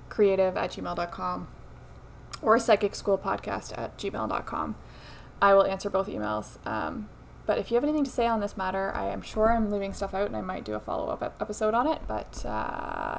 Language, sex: English, female